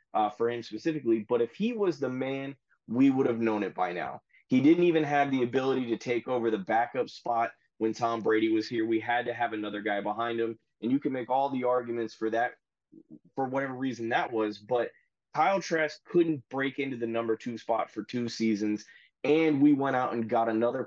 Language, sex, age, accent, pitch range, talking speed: English, male, 20-39, American, 115-140 Hz, 220 wpm